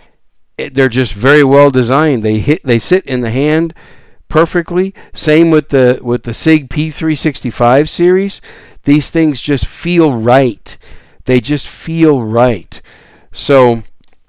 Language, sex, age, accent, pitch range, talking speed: English, male, 50-69, American, 115-160 Hz, 135 wpm